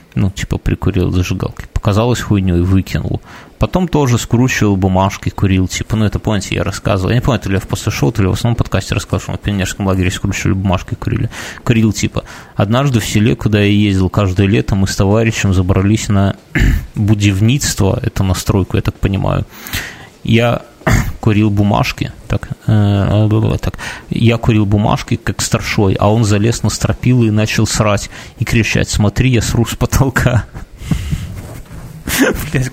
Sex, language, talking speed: male, Russian, 160 wpm